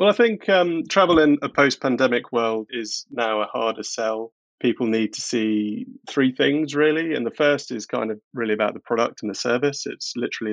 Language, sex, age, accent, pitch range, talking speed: English, male, 30-49, British, 110-125 Hz, 205 wpm